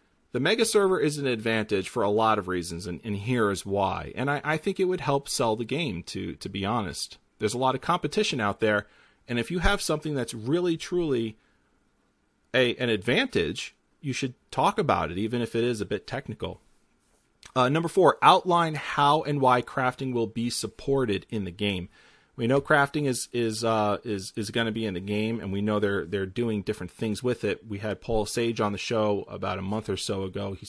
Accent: American